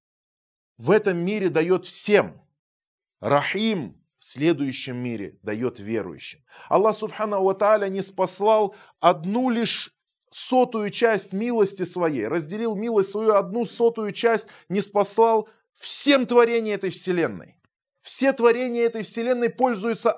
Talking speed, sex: 115 wpm, male